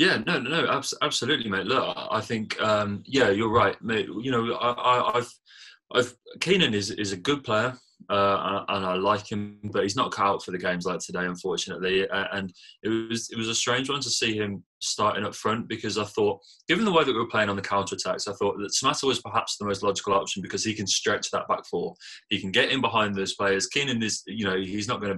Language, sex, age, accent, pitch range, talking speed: English, male, 20-39, British, 95-115 Hz, 240 wpm